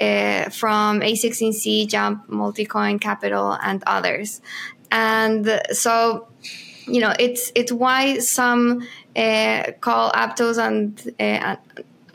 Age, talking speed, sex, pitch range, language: 10-29, 105 wpm, female, 215-235 Hz, English